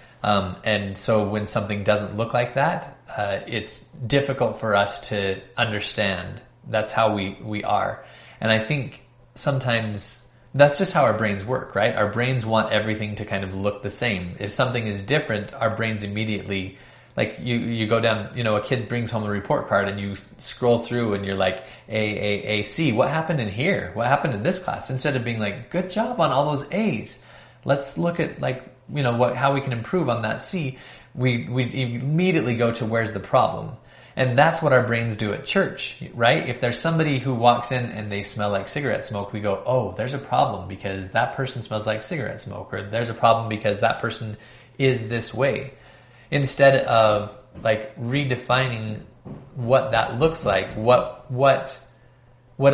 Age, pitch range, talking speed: 20-39, 105-135 Hz, 195 wpm